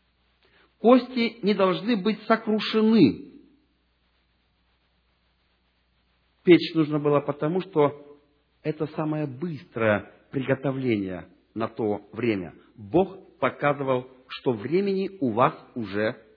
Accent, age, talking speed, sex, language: native, 40-59, 90 wpm, male, Russian